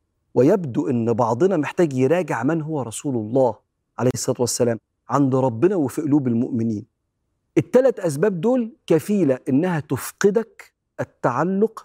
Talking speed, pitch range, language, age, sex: 120 wpm, 120-170 Hz, Arabic, 40-59, male